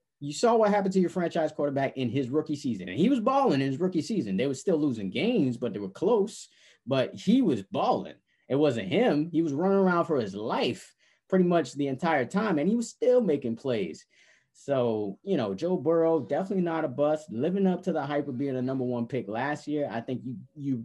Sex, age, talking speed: male, 30-49, 230 wpm